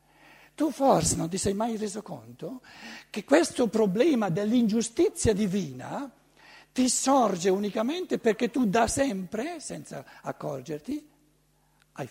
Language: Italian